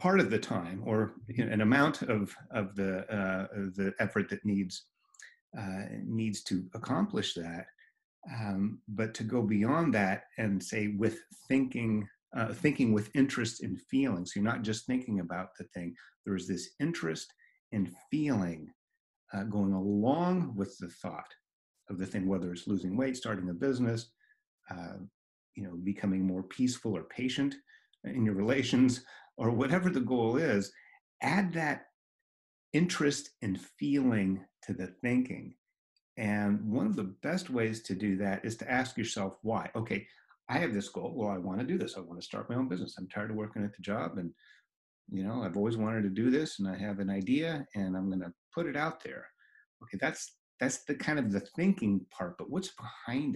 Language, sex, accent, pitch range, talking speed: English, male, American, 100-130 Hz, 185 wpm